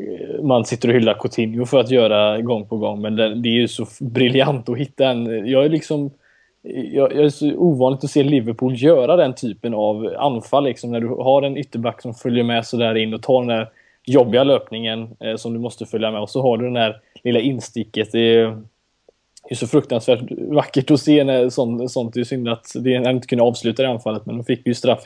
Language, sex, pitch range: Swedish, male, 115-130 Hz